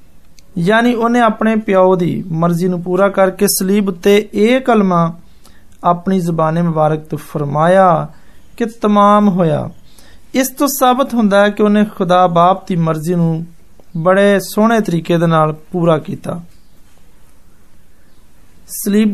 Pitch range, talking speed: 170-215 Hz, 40 wpm